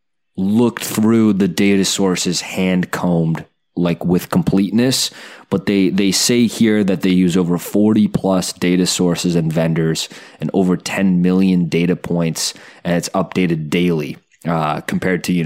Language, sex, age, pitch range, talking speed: English, male, 20-39, 85-115 Hz, 150 wpm